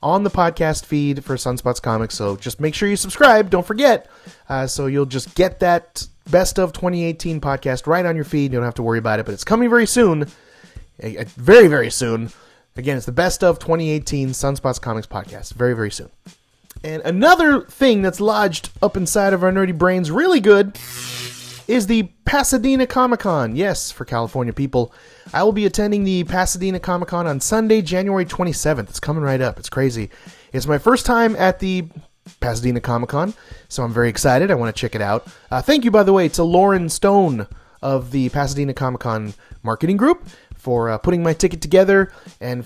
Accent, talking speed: American, 195 wpm